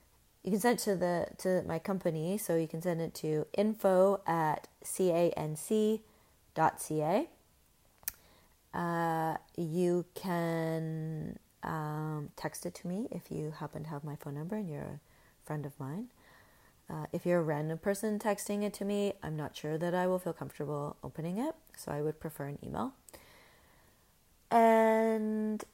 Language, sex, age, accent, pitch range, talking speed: English, female, 30-49, American, 155-200 Hz, 155 wpm